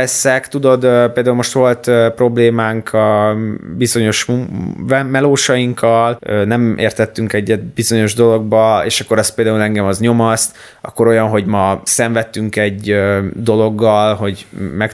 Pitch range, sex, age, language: 110-135 Hz, male, 20-39, Hungarian